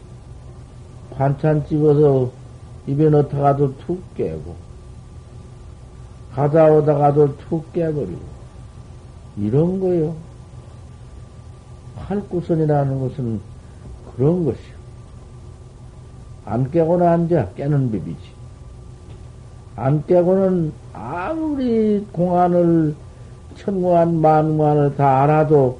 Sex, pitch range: male, 115-160 Hz